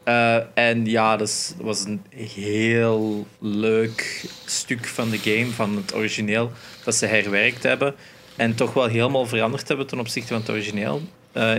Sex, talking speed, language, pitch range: male, 165 wpm, Dutch, 110-125 Hz